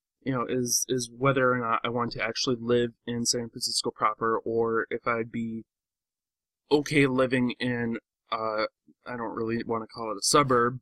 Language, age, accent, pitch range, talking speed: English, 20-39, American, 115-140 Hz, 185 wpm